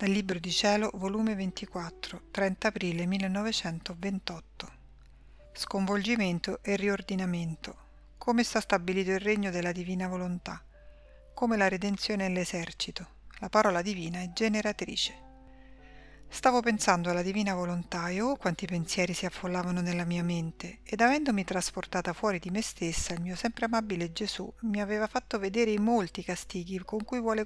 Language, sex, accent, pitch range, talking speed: Italian, female, native, 180-215 Hz, 145 wpm